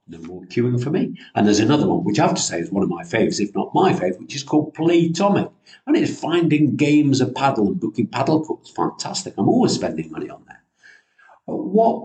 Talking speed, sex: 230 wpm, male